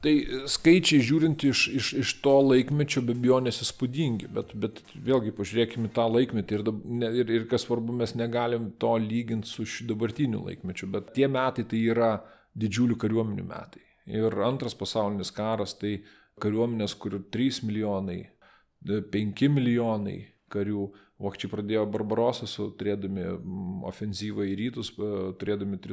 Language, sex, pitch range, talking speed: English, male, 105-125 Hz, 135 wpm